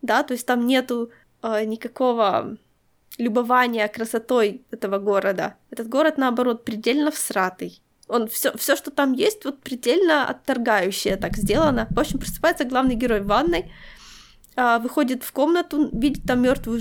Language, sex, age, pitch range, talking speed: Ukrainian, female, 20-39, 225-265 Hz, 145 wpm